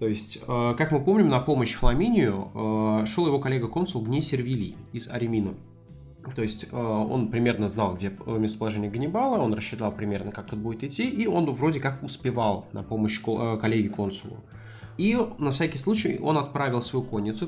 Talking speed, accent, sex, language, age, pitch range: 160 wpm, native, male, Russian, 20-39, 105-130 Hz